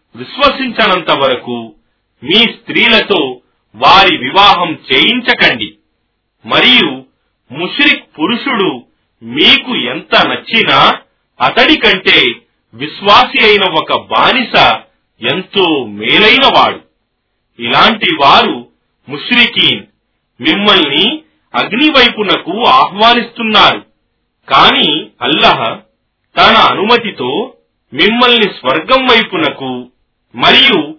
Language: Telugu